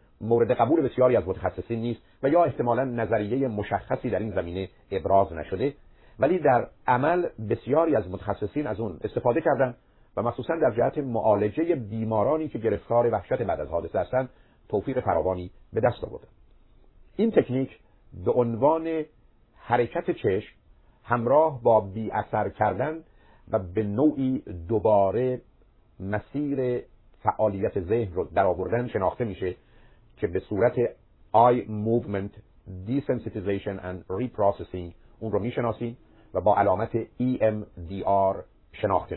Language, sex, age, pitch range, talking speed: Persian, male, 50-69, 100-125 Hz, 125 wpm